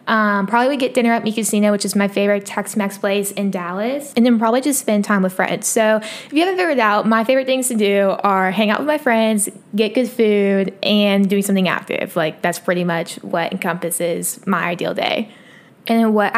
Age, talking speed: 20-39, 220 wpm